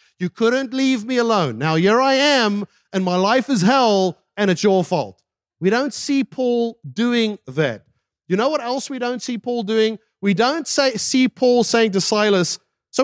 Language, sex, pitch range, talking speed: English, male, 195-280 Hz, 190 wpm